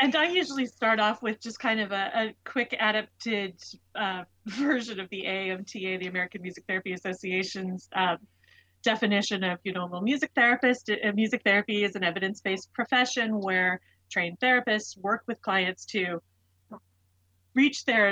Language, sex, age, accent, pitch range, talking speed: English, female, 30-49, American, 185-225 Hz, 150 wpm